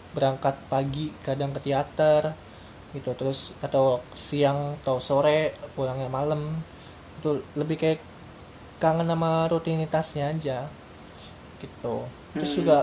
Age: 20-39